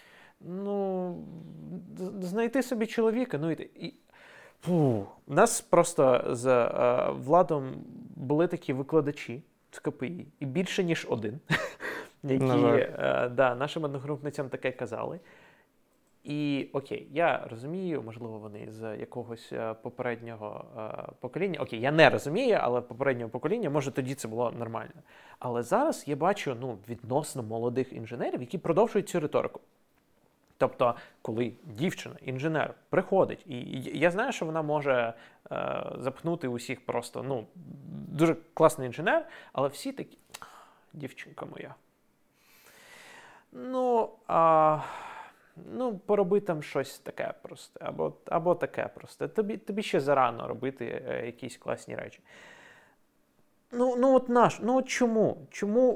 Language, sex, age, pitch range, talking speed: Ukrainian, male, 20-39, 130-200 Hz, 120 wpm